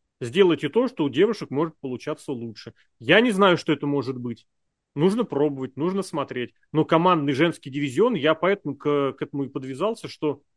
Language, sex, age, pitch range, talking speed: Russian, male, 30-49, 130-170 Hz, 175 wpm